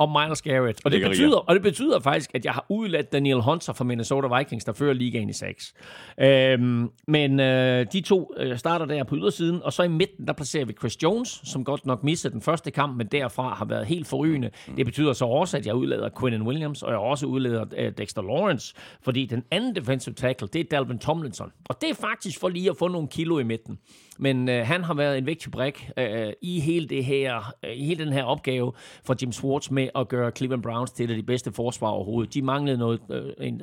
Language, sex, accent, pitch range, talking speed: Danish, male, native, 120-155 Hz, 230 wpm